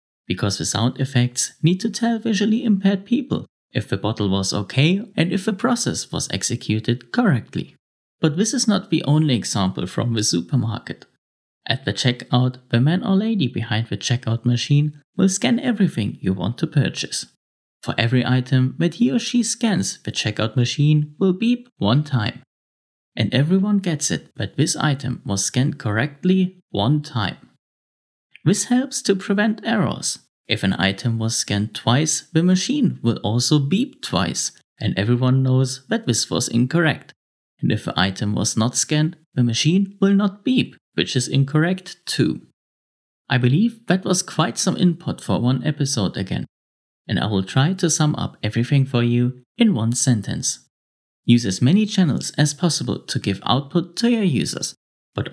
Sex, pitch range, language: male, 115-190 Hz, English